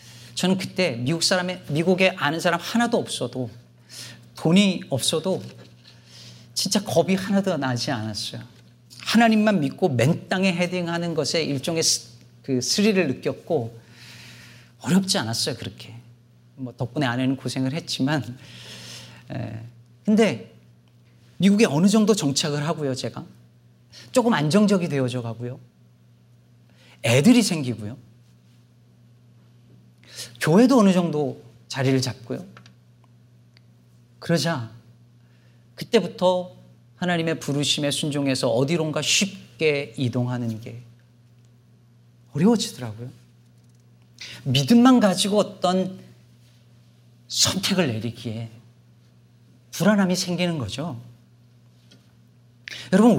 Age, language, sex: 40-59, Korean, male